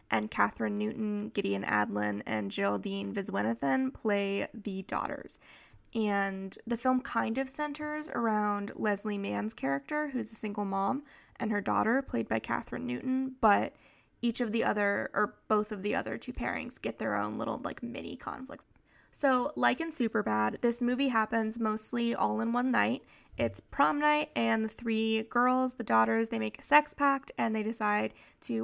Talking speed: 170 wpm